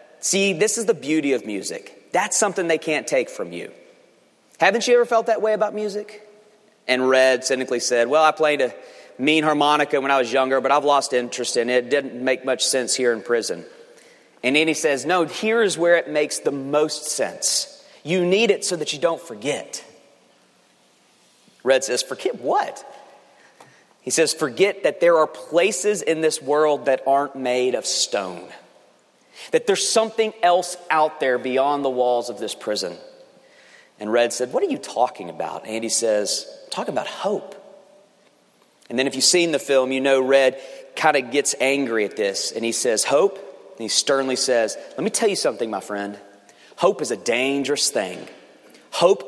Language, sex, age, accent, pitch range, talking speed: English, male, 30-49, American, 130-210 Hz, 185 wpm